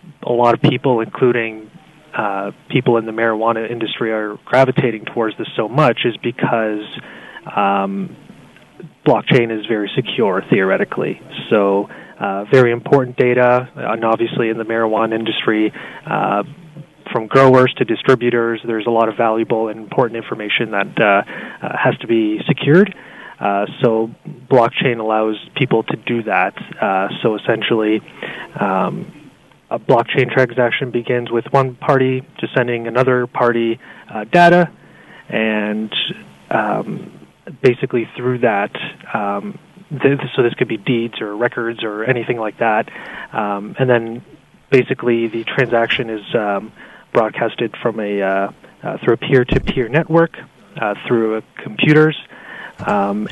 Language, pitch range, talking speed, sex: English, 110-130 Hz, 135 wpm, male